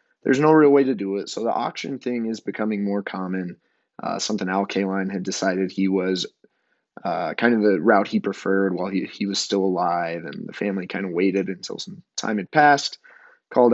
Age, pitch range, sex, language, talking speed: 20-39, 95-115 Hz, male, English, 210 wpm